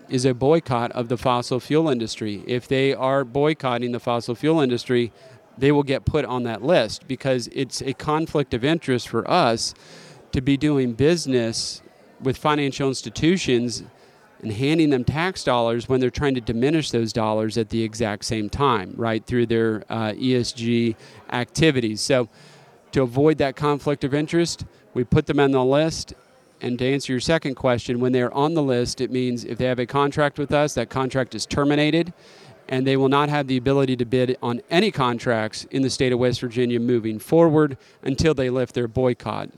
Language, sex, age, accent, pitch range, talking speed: English, male, 40-59, American, 120-140 Hz, 185 wpm